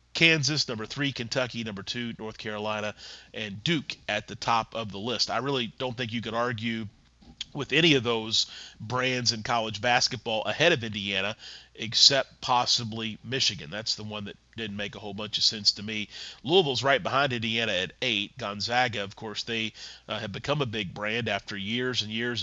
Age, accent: 30-49, American